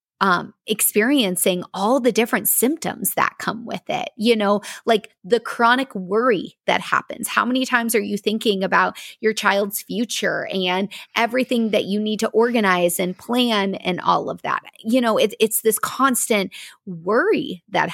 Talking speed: 165 wpm